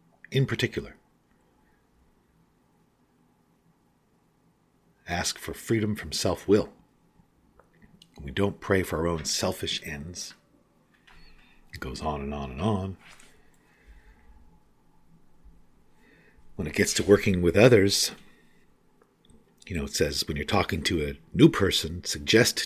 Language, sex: English, male